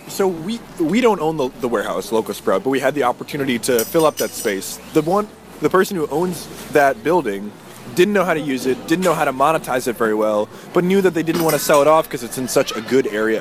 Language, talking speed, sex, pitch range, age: English, 265 wpm, male, 120-150 Hz, 20-39